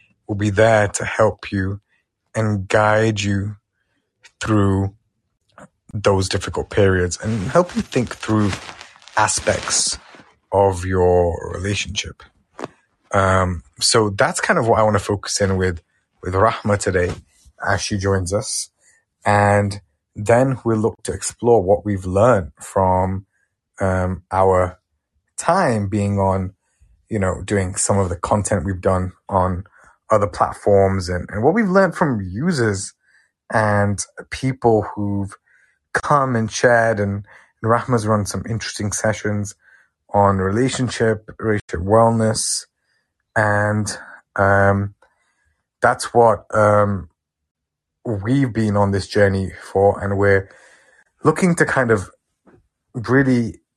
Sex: male